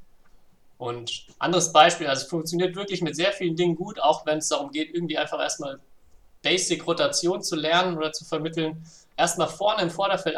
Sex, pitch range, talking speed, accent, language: male, 135-175 Hz, 180 wpm, German, German